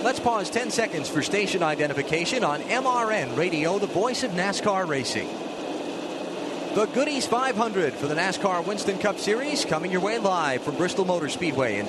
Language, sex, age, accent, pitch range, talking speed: English, male, 30-49, American, 155-225 Hz, 165 wpm